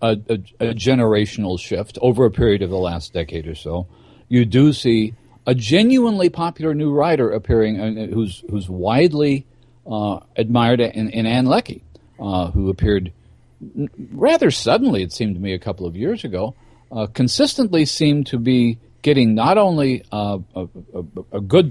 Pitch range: 105-130 Hz